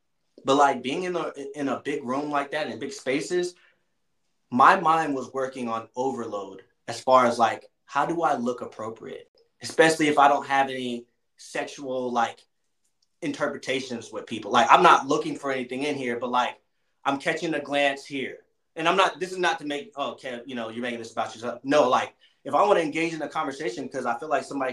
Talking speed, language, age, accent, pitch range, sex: 210 wpm, English, 20-39, American, 130-170 Hz, male